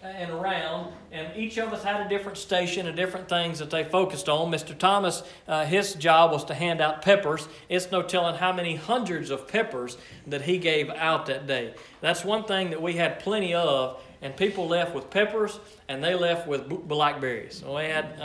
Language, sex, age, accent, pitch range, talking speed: English, male, 40-59, American, 145-185 Hz, 205 wpm